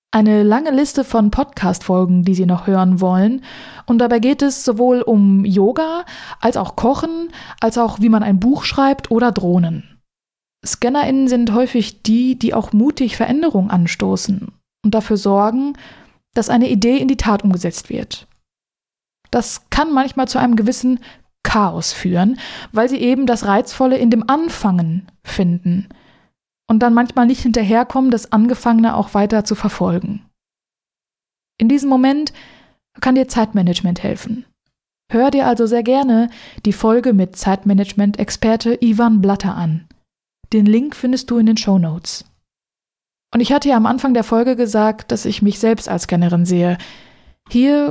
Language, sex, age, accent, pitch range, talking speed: German, female, 20-39, German, 205-255 Hz, 150 wpm